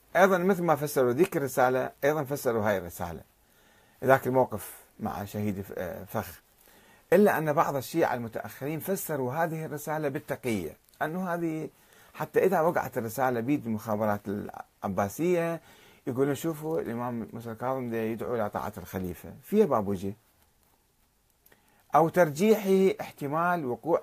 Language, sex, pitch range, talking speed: Arabic, male, 110-170 Hz, 120 wpm